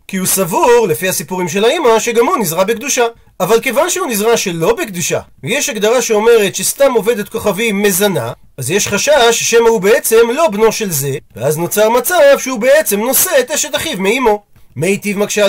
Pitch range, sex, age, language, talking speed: 195-250 Hz, male, 40-59, Hebrew, 180 wpm